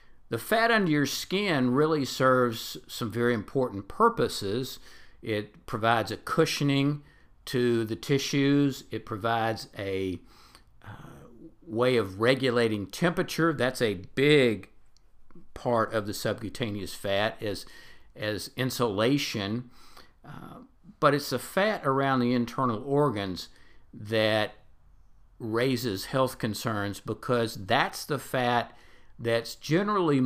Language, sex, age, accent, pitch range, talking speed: English, male, 50-69, American, 100-130 Hz, 110 wpm